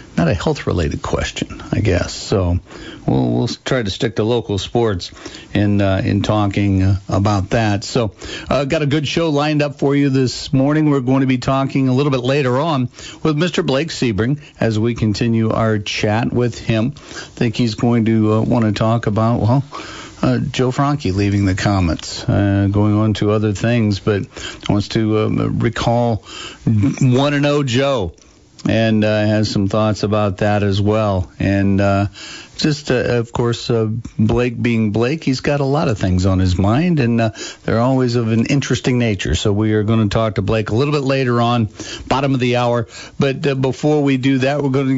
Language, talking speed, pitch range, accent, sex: English, 195 wpm, 105-135 Hz, American, male